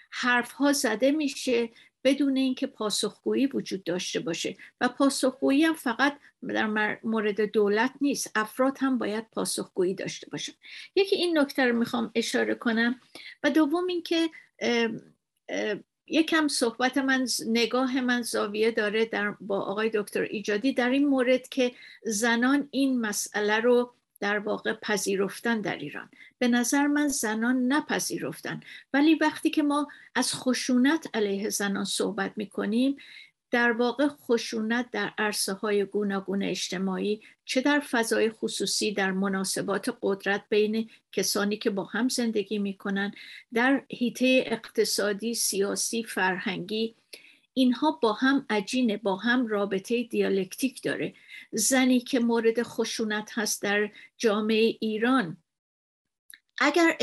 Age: 50-69